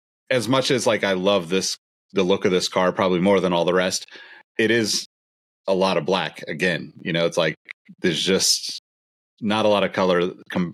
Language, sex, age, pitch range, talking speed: English, male, 30-49, 80-100 Hz, 205 wpm